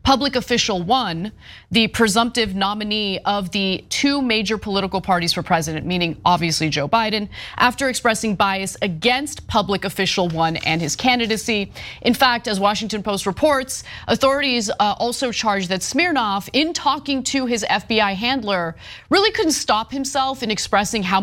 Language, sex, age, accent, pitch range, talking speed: English, female, 30-49, American, 195-250 Hz, 145 wpm